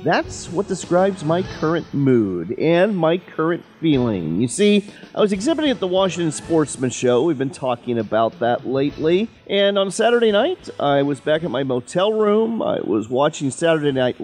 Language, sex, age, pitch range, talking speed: English, male, 40-59, 135-190 Hz, 175 wpm